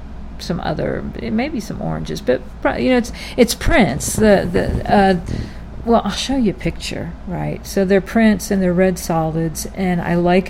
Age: 50-69